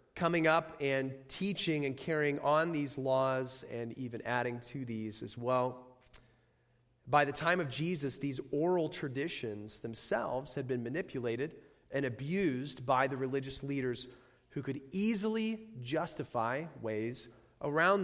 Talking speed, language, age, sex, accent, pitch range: 135 wpm, English, 30-49, male, American, 125-165 Hz